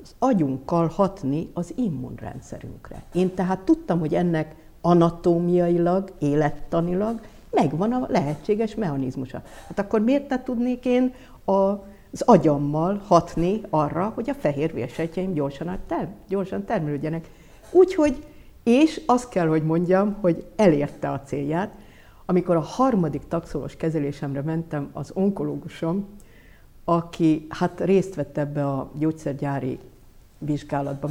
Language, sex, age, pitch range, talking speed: Hungarian, female, 60-79, 145-190 Hz, 115 wpm